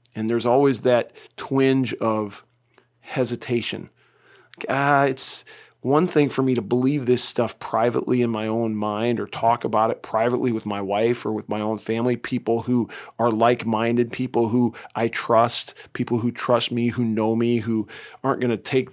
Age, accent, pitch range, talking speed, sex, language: 40-59, American, 110-125 Hz, 175 wpm, male, English